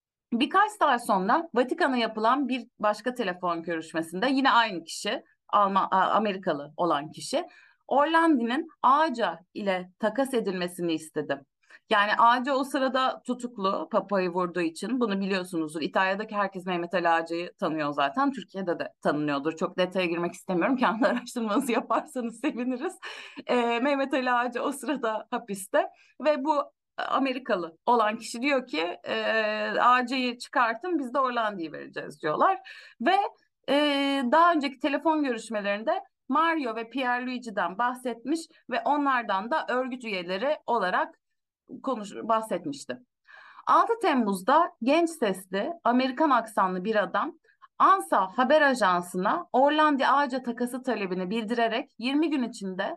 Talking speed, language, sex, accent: 125 wpm, Turkish, female, native